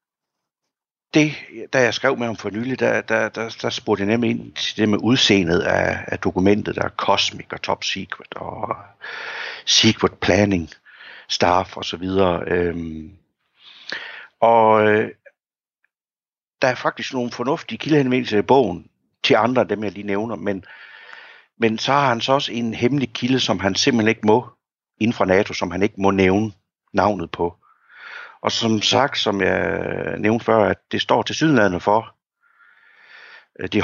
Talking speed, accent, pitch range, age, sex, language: 165 wpm, native, 95-120 Hz, 60-79, male, Danish